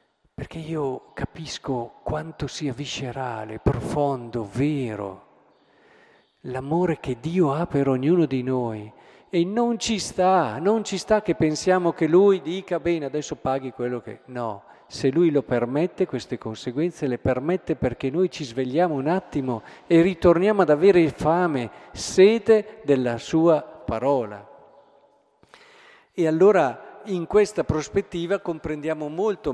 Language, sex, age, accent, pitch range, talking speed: Italian, male, 50-69, native, 130-175 Hz, 130 wpm